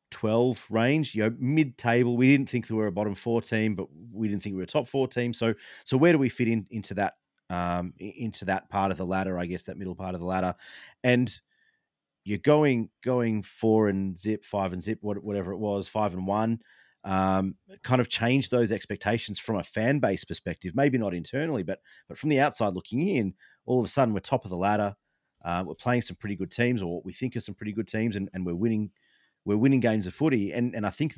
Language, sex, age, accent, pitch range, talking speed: English, male, 30-49, Australian, 95-115 Hz, 240 wpm